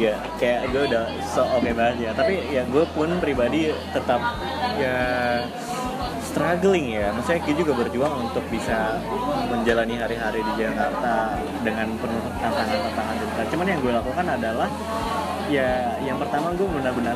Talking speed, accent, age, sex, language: 145 wpm, native, 20-39, male, Indonesian